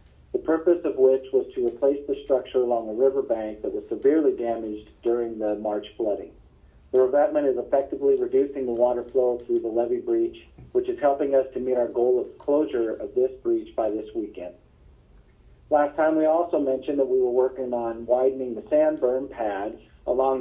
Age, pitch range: 50-69, 125-190 Hz